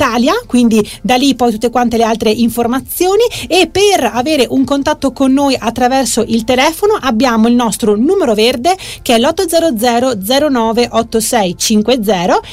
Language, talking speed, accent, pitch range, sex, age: Italian, 140 wpm, native, 230-300 Hz, female, 30-49